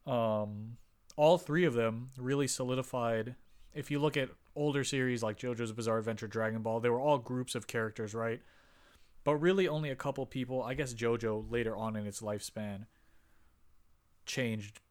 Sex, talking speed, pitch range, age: male, 165 wpm, 100-125 Hz, 30-49